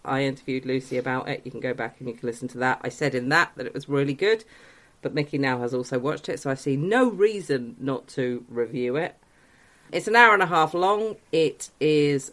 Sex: female